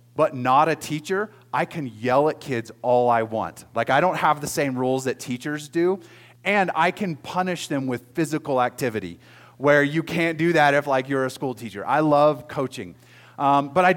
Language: English